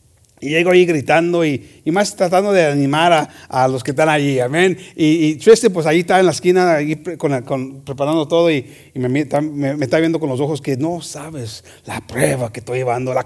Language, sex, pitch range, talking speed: English, male, 140-195 Hz, 235 wpm